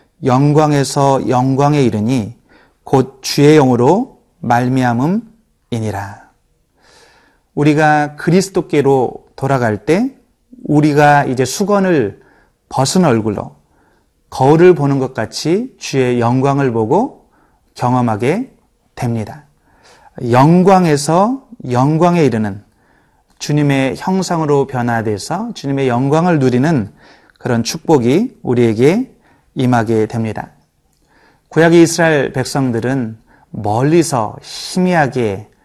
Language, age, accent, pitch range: Korean, 30-49, native, 125-160 Hz